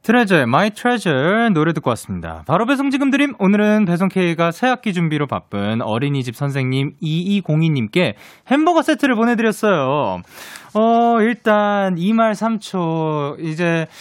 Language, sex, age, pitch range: Korean, male, 20-39, 145-230 Hz